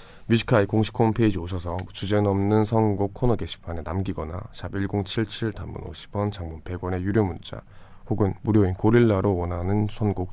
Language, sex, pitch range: Korean, male, 90-110 Hz